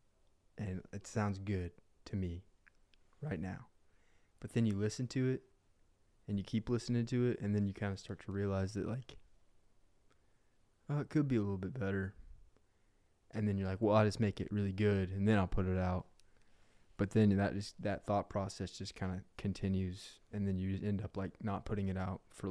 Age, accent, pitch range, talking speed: 20-39, American, 95-105 Hz, 210 wpm